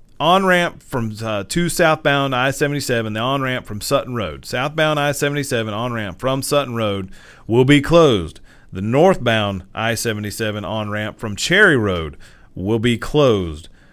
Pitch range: 110-150 Hz